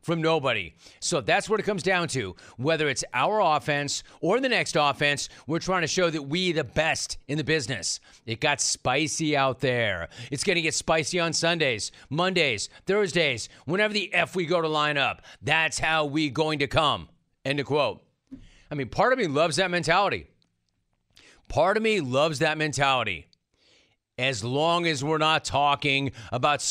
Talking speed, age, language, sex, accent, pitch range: 180 wpm, 40-59, English, male, American, 135-170 Hz